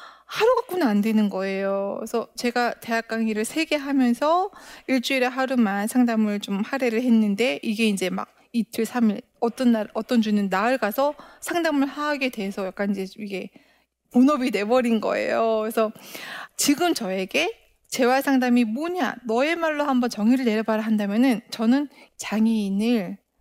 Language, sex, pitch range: Korean, female, 210-270 Hz